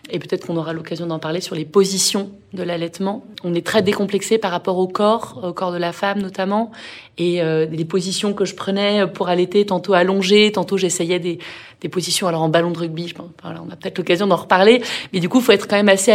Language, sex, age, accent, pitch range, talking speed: French, female, 30-49, French, 175-205 Hz, 240 wpm